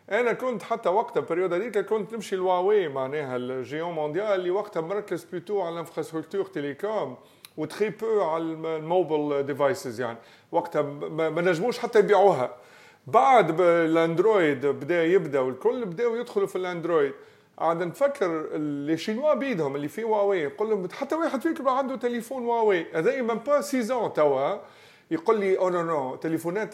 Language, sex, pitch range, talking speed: English, male, 155-215 Hz, 140 wpm